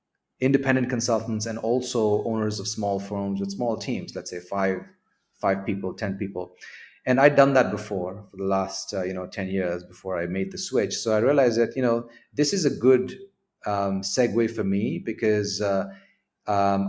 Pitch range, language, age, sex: 100-120 Hz, English, 30-49, male